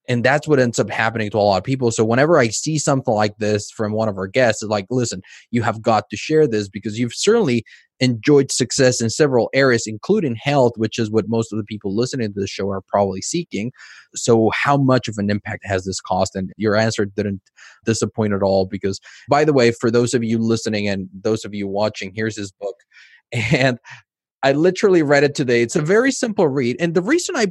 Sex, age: male, 20-39